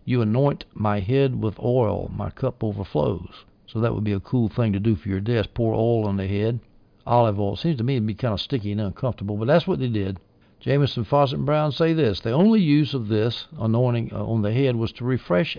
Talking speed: 240 wpm